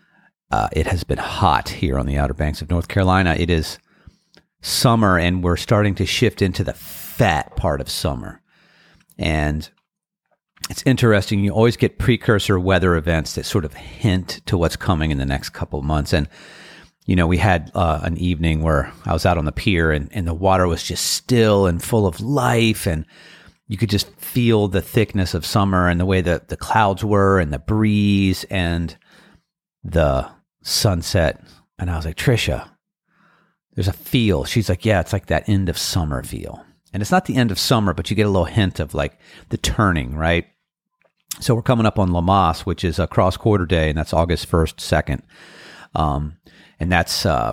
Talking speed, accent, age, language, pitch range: 195 wpm, American, 40-59, English, 85-105 Hz